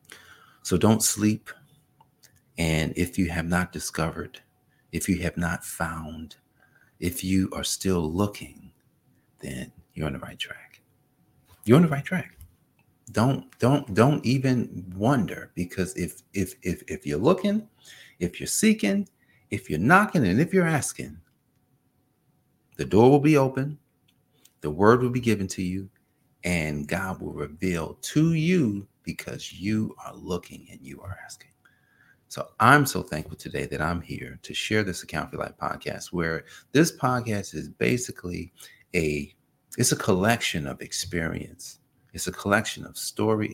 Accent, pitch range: American, 80-125 Hz